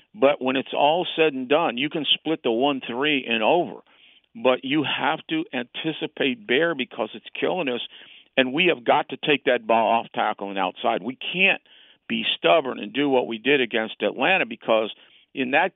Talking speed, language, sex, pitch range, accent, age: 190 wpm, English, male, 120-150 Hz, American, 50-69